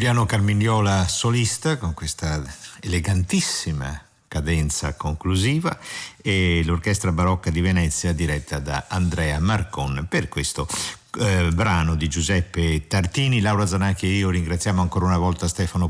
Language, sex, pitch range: Italian, male, 85-110 Hz